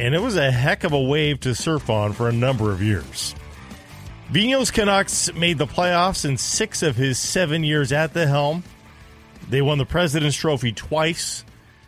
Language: English